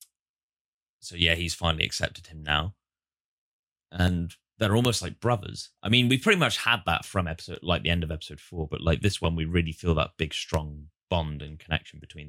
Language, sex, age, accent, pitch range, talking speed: English, male, 10-29, British, 75-95 Hz, 200 wpm